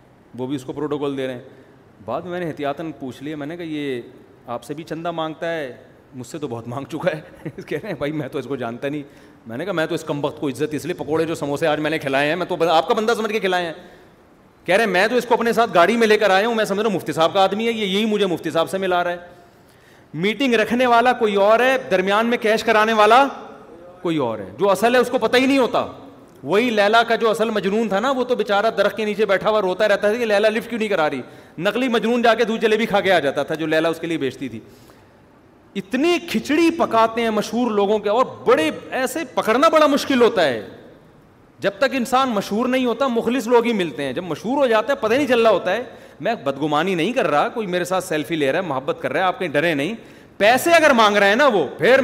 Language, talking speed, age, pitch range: Urdu, 270 wpm, 30-49, 155-230 Hz